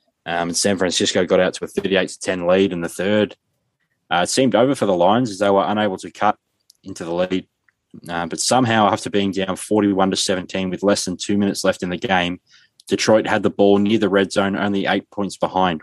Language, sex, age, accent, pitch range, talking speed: English, male, 20-39, Australian, 90-100 Hz, 225 wpm